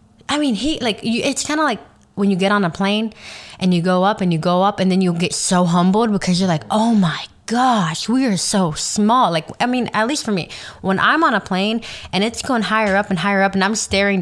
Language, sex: English, female